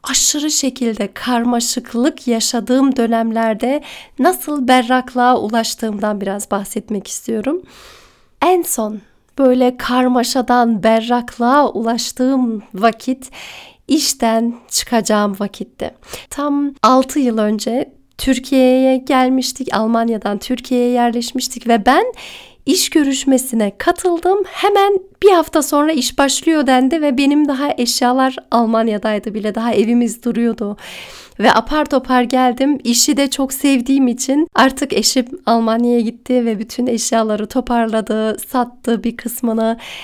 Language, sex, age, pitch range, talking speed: Turkish, female, 40-59, 225-270 Hz, 105 wpm